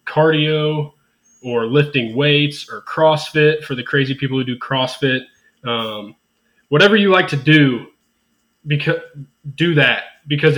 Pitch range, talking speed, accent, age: 120-145 Hz, 130 wpm, American, 20-39